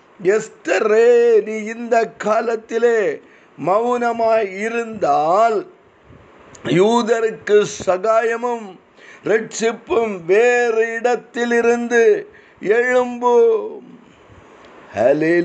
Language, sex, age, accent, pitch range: Tamil, male, 50-69, native, 220-245 Hz